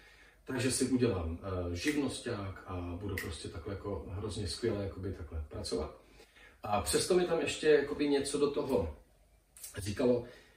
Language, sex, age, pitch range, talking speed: Czech, male, 40-59, 110-130 Hz, 130 wpm